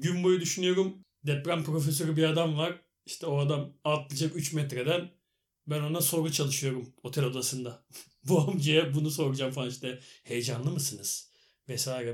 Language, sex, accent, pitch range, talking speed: Turkish, male, native, 140-175 Hz, 145 wpm